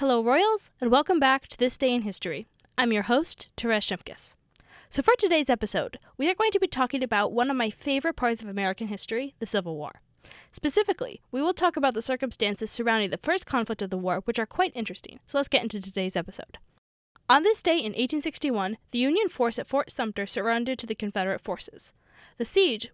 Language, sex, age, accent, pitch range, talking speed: English, female, 10-29, American, 215-285 Hz, 205 wpm